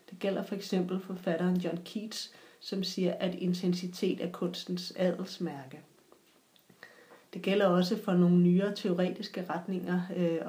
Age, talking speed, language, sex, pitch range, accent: 30-49, 130 wpm, Danish, female, 175-195 Hz, native